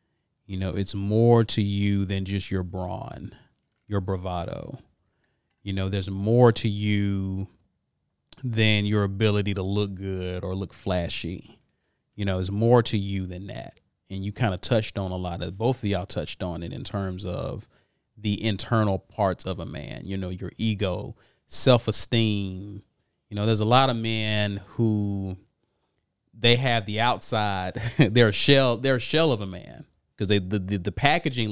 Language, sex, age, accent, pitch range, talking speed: English, male, 30-49, American, 95-115 Hz, 170 wpm